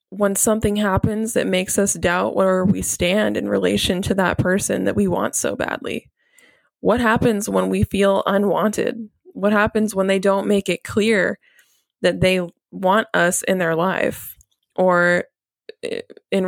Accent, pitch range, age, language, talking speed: American, 180-215 Hz, 20-39, English, 155 wpm